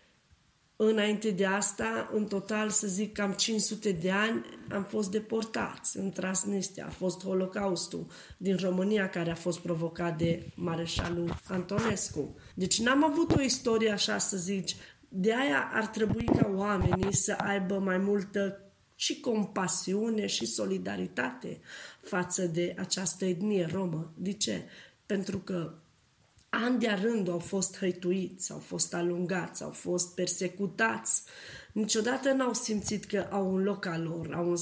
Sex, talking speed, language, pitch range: female, 140 wpm, Romanian, 185-210 Hz